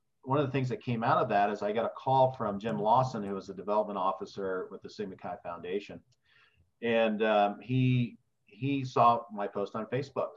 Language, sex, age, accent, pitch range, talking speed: English, male, 40-59, American, 105-130 Hz, 210 wpm